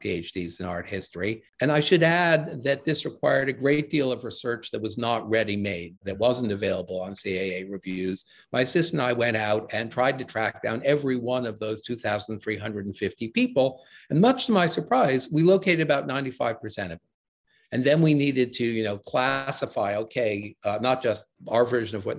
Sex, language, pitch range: male, English, 100-140 Hz